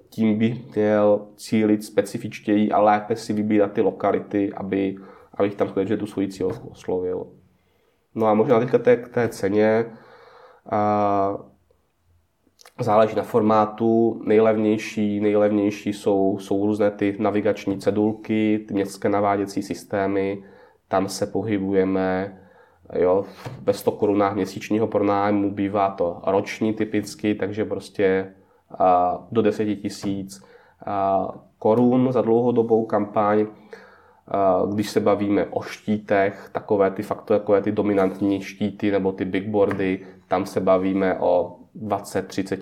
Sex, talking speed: male, 115 wpm